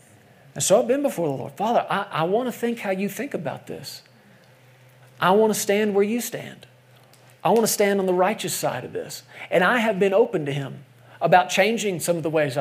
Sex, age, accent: male, 40-59, American